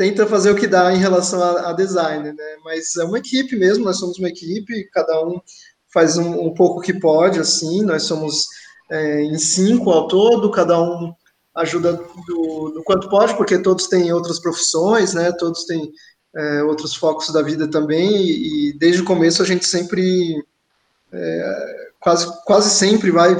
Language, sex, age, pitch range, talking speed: Portuguese, male, 20-39, 165-190 Hz, 180 wpm